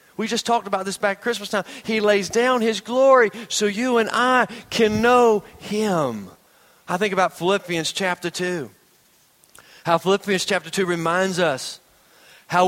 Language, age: English, 40-59